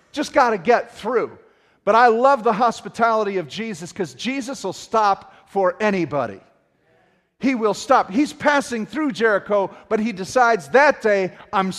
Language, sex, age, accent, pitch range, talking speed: English, male, 40-59, American, 190-270 Hz, 160 wpm